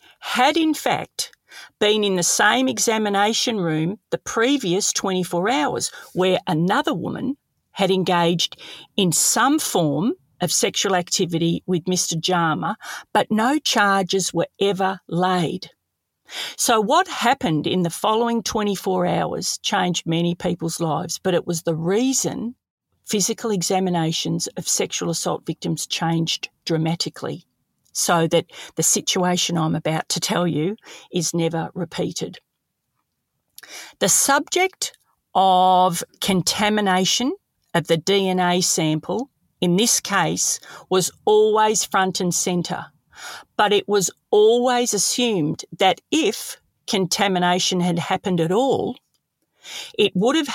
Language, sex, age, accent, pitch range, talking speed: English, female, 50-69, Australian, 170-215 Hz, 120 wpm